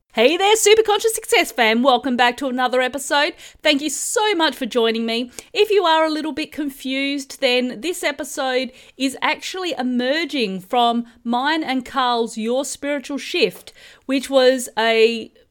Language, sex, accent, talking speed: English, female, Australian, 155 wpm